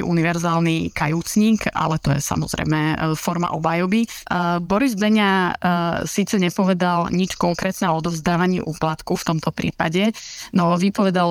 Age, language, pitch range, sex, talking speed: 20-39, Slovak, 160-180 Hz, female, 115 wpm